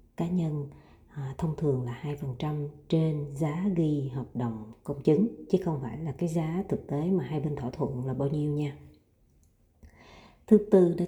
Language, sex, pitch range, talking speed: Vietnamese, female, 130-170 Hz, 180 wpm